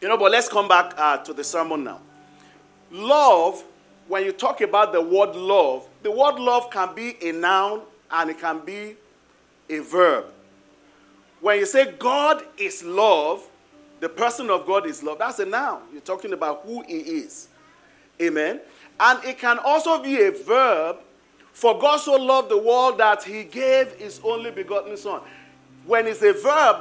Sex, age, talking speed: male, 40-59, 175 wpm